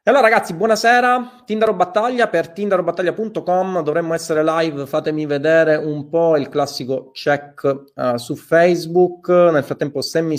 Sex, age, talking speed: male, 30-49, 145 wpm